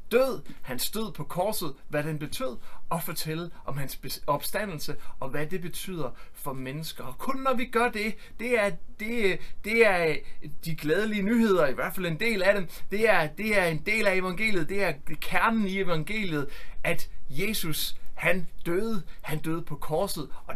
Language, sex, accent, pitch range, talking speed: Danish, male, native, 155-200 Hz, 165 wpm